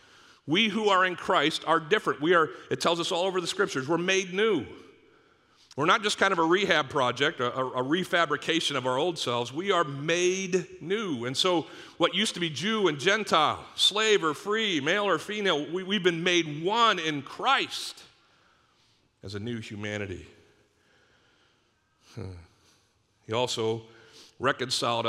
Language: English